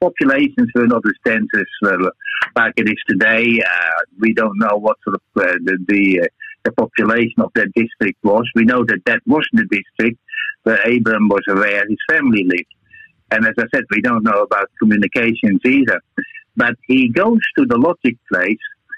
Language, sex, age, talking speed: English, male, 60-79, 185 wpm